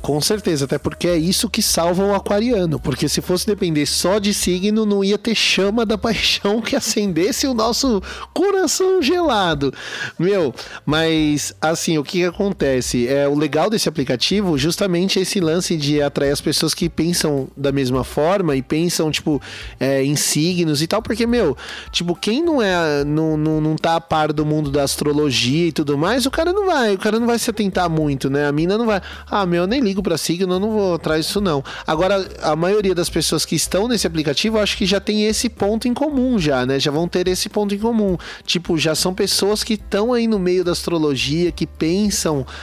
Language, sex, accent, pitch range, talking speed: Portuguese, male, Brazilian, 145-200 Hz, 210 wpm